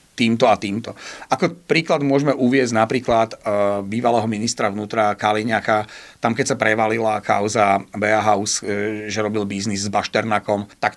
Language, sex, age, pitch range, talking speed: Slovak, male, 40-59, 110-125 Hz, 130 wpm